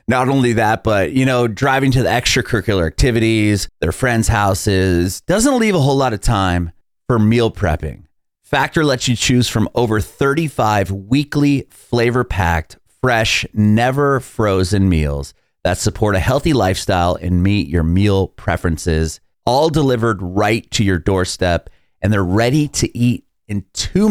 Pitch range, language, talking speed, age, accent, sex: 95-125 Hz, English, 145 wpm, 30-49, American, male